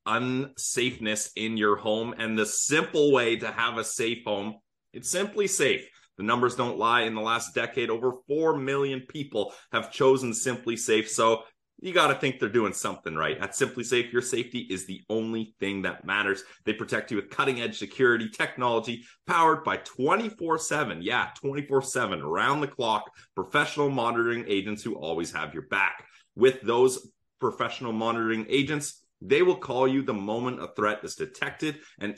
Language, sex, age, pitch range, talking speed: English, male, 30-49, 110-140 Hz, 175 wpm